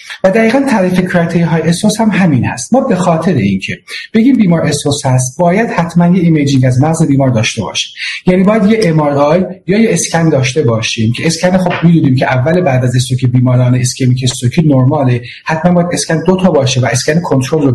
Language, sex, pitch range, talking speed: Persian, male, 135-185 Hz, 185 wpm